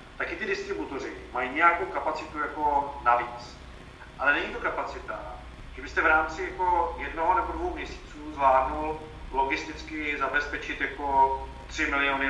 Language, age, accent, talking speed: Czech, 40-59, native, 130 wpm